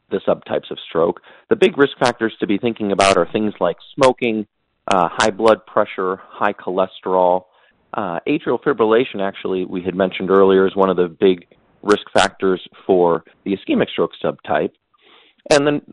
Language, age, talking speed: English, 40-59, 165 wpm